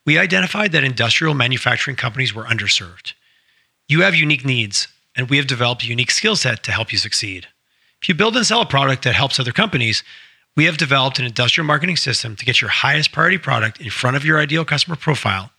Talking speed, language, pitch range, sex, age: 210 wpm, English, 120-155 Hz, male, 30-49